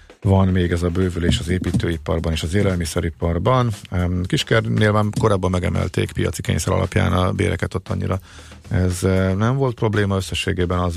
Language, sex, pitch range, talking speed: Hungarian, male, 85-100 Hz, 150 wpm